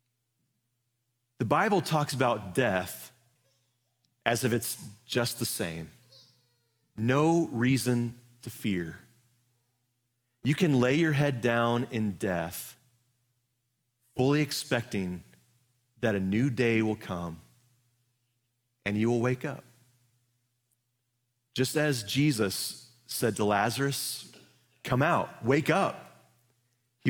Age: 30-49